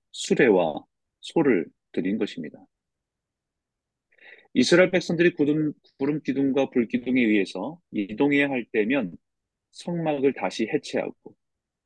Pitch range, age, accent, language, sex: 110-150 Hz, 40-59, native, Korean, male